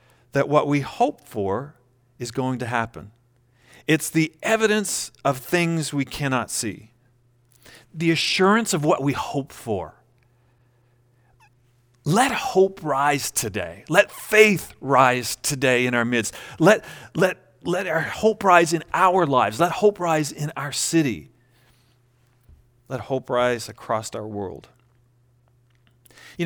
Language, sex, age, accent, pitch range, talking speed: English, male, 40-59, American, 120-150 Hz, 130 wpm